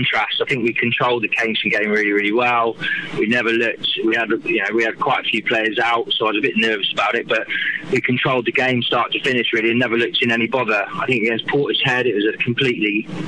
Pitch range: 115-130 Hz